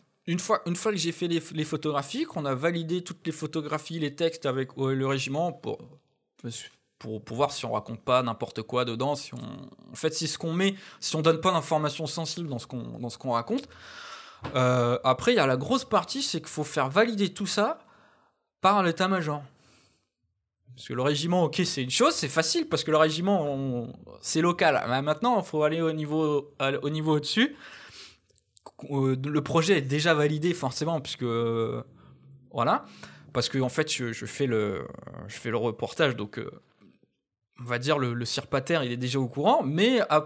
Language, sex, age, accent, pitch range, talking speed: French, male, 20-39, French, 130-170 Hz, 200 wpm